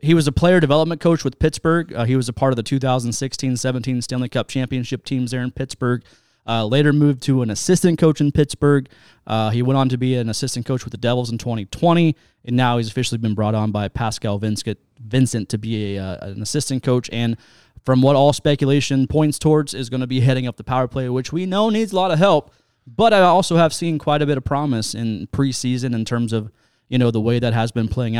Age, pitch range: 20-39, 115-140 Hz